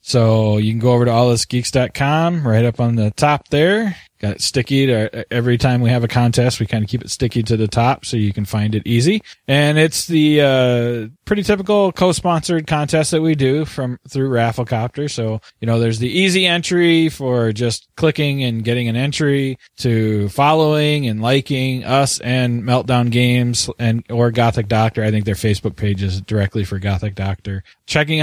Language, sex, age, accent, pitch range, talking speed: English, male, 20-39, American, 115-150 Hz, 190 wpm